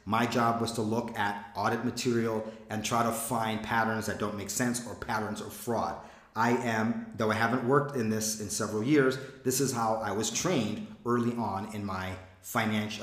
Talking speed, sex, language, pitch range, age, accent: 200 wpm, male, English, 110-135 Hz, 40-59, American